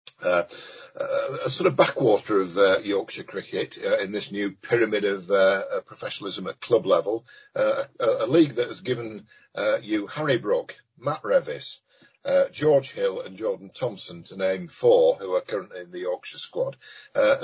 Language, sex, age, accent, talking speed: English, male, 50-69, British, 175 wpm